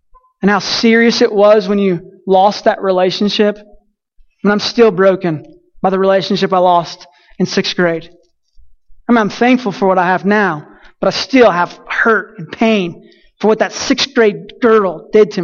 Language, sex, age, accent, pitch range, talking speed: English, male, 20-39, American, 190-230 Hz, 180 wpm